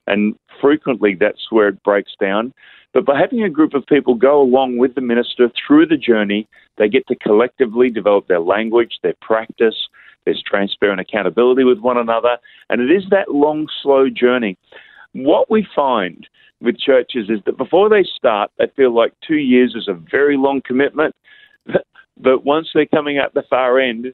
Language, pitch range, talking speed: English, 115-155 Hz, 180 wpm